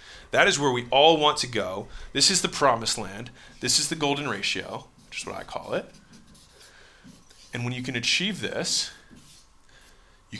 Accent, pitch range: American, 105-140 Hz